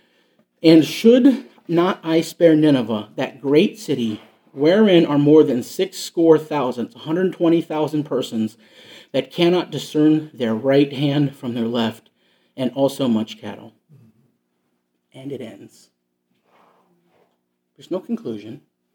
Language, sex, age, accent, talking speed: English, male, 40-59, American, 115 wpm